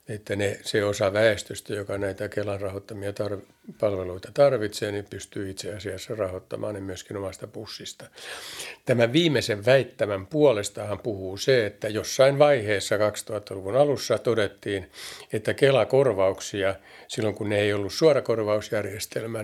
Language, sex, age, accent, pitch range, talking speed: Finnish, male, 60-79, native, 100-120 Hz, 125 wpm